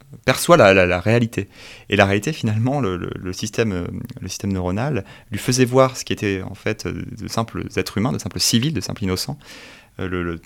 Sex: male